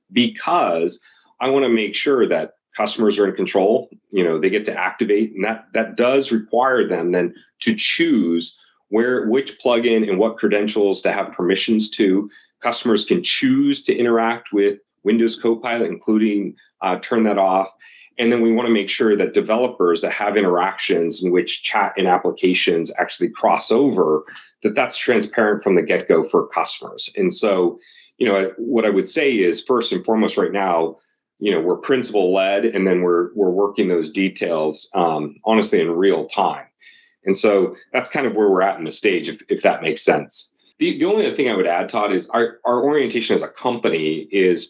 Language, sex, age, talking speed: English, male, 40-59, 190 wpm